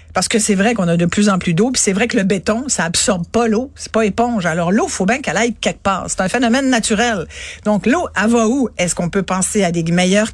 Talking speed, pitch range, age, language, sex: 285 wpm, 185-235 Hz, 50-69, French, female